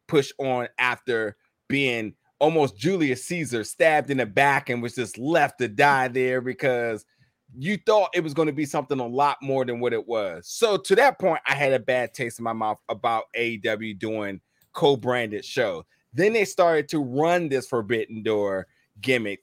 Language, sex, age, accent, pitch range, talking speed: English, male, 30-49, American, 130-160 Hz, 185 wpm